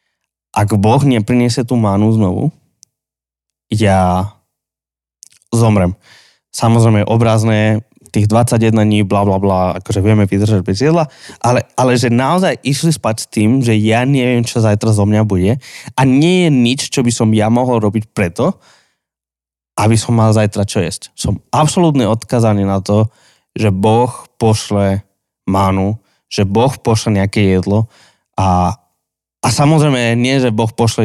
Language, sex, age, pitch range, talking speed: Slovak, male, 20-39, 100-125 Hz, 145 wpm